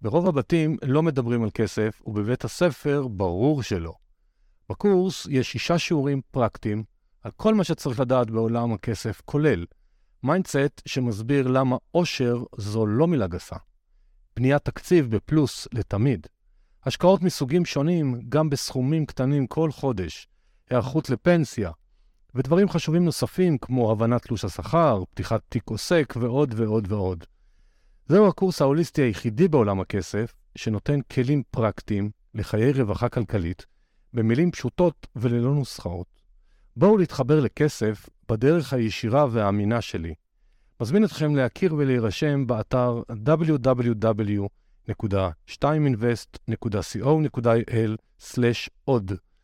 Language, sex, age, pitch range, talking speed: Hebrew, male, 50-69, 110-150 Hz, 105 wpm